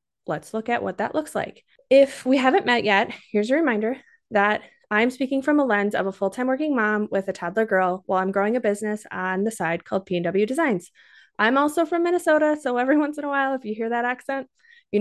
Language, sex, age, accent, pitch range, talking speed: English, female, 20-39, American, 195-255 Hz, 230 wpm